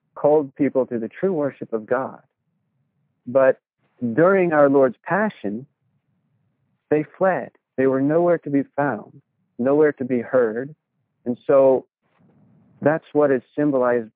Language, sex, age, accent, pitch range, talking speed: English, male, 50-69, American, 115-140 Hz, 130 wpm